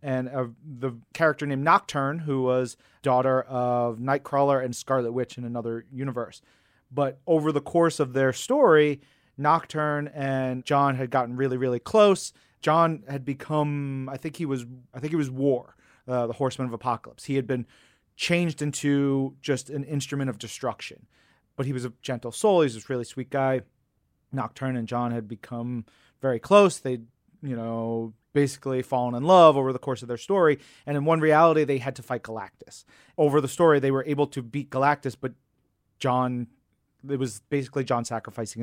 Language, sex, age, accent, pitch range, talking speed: English, male, 30-49, American, 125-145 Hz, 180 wpm